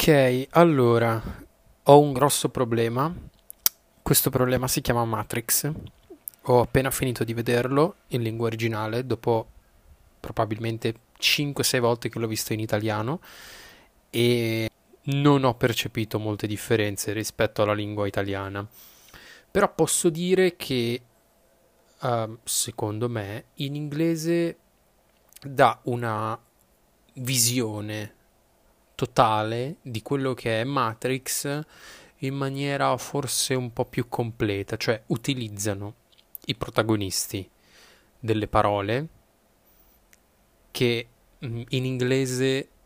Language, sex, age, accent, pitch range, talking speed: Italian, male, 20-39, native, 110-130 Hz, 100 wpm